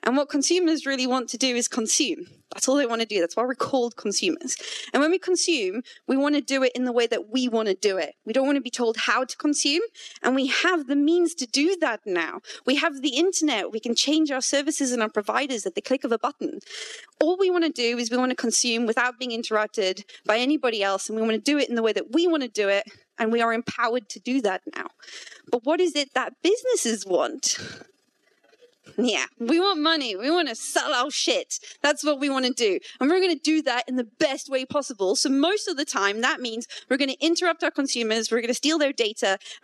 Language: English